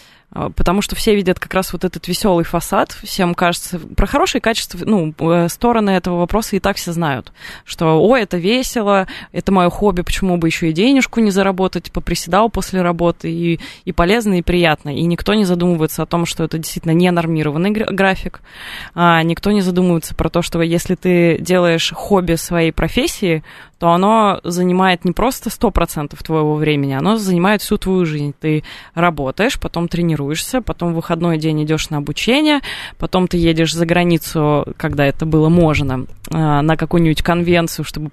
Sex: female